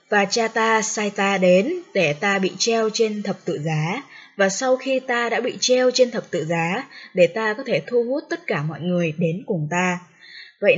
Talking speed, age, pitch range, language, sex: 215 wpm, 20-39, 175-225 Hz, Vietnamese, female